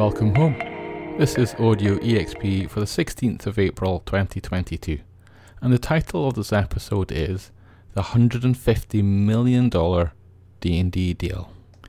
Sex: male